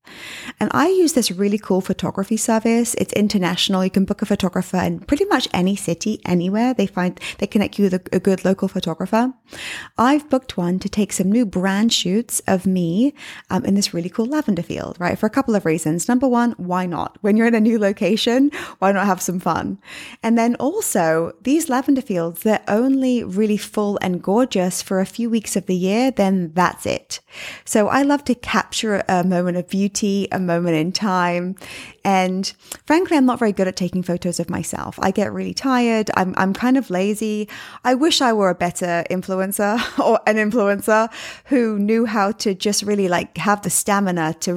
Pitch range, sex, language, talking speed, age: 180-225 Hz, female, English, 200 wpm, 20-39